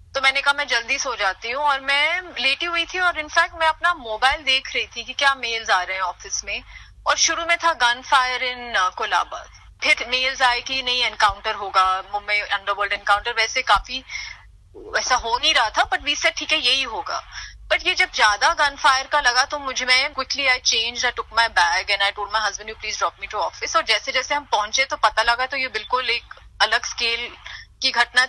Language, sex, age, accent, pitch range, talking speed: Hindi, female, 30-49, native, 230-290 Hz, 225 wpm